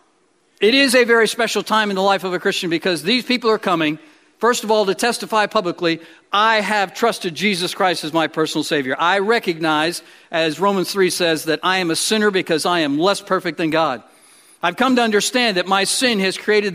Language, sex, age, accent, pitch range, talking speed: English, male, 50-69, American, 170-230 Hz, 210 wpm